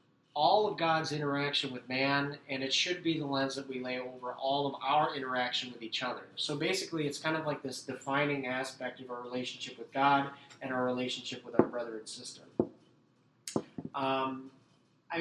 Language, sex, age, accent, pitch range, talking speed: English, male, 30-49, American, 130-155 Hz, 185 wpm